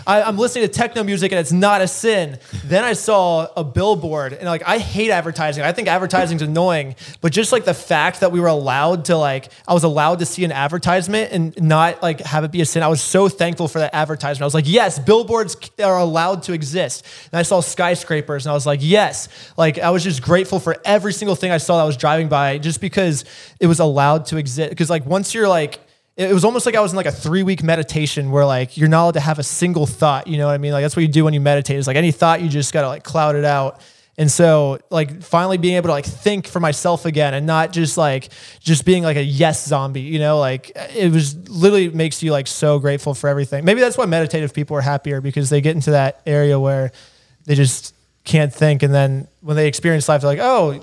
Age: 20-39